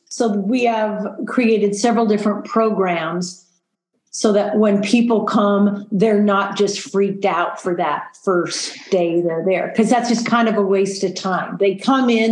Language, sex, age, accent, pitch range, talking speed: English, female, 40-59, American, 190-235 Hz, 170 wpm